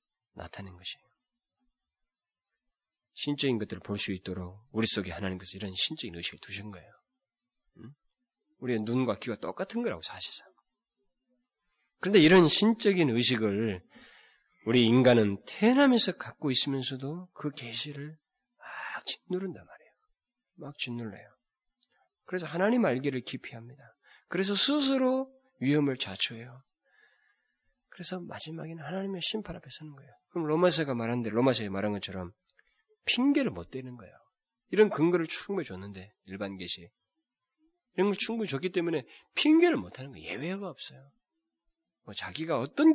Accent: native